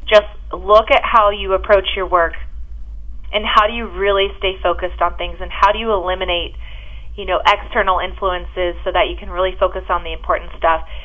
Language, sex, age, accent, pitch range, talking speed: English, female, 30-49, American, 175-210 Hz, 195 wpm